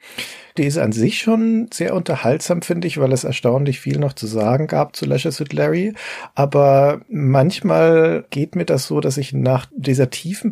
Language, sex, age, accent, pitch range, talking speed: German, male, 40-59, German, 120-140 Hz, 175 wpm